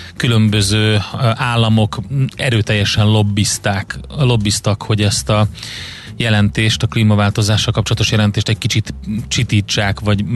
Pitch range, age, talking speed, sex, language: 105-115 Hz, 30-49, 100 wpm, male, Hungarian